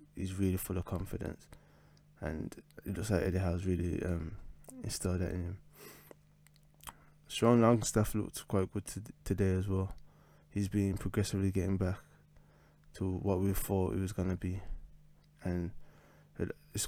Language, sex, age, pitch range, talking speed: English, male, 20-39, 95-120 Hz, 140 wpm